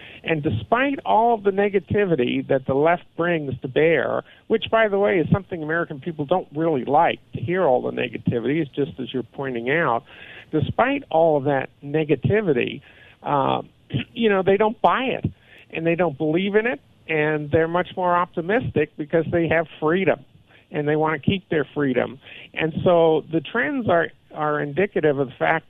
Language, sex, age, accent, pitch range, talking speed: English, male, 50-69, American, 140-180 Hz, 180 wpm